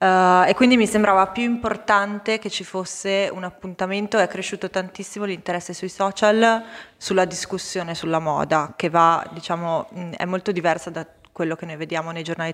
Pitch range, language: 170-205 Hz, Italian